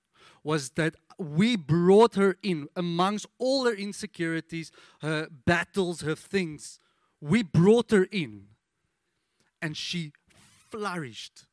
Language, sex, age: English, male, 30-49